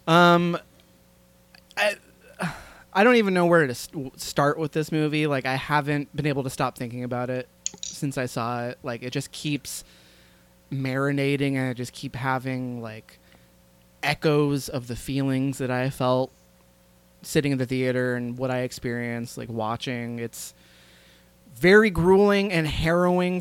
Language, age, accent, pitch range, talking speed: English, 20-39, American, 120-150 Hz, 150 wpm